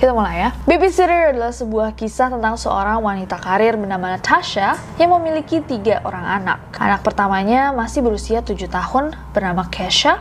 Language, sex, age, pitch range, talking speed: Indonesian, female, 20-39, 205-270 Hz, 160 wpm